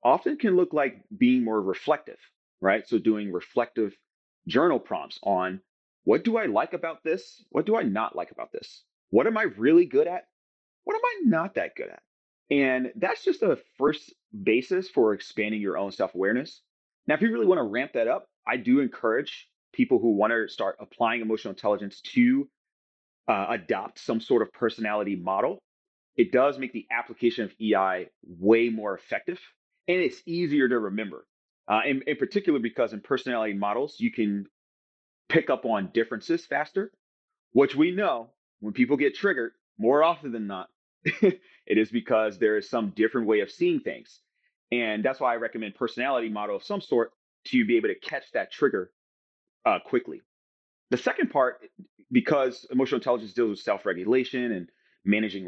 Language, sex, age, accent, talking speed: English, male, 30-49, American, 170 wpm